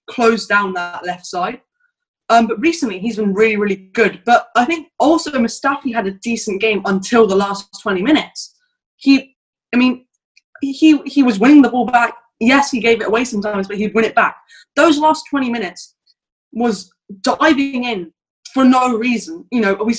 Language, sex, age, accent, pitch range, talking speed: English, female, 20-39, British, 210-270 Hz, 185 wpm